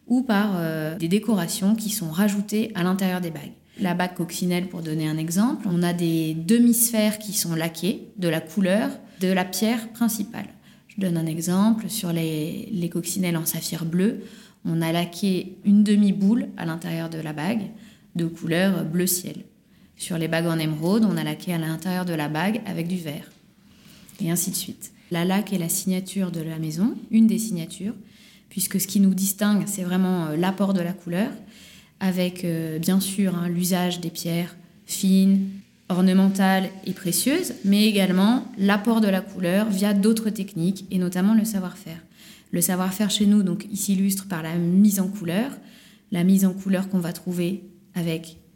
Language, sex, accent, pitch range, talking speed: French, female, French, 175-205 Hz, 180 wpm